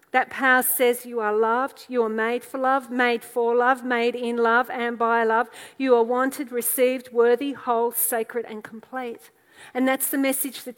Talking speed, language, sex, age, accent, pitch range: 190 wpm, English, female, 40-59, Australian, 240-275 Hz